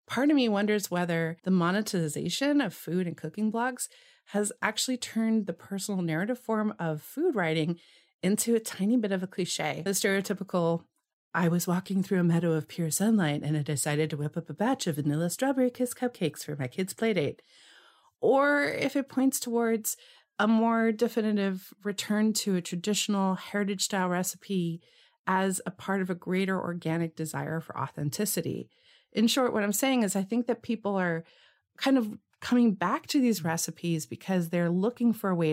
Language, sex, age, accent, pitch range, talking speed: English, female, 30-49, American, 170-225 Hz, 180 wpm